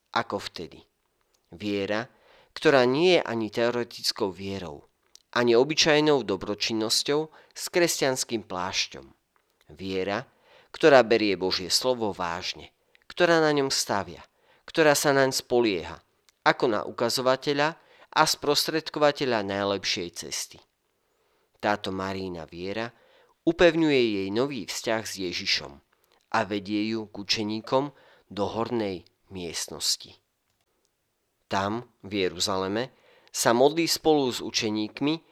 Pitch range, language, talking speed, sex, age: 95-130 Hz, Slovak, 105 wpm, male, 40-59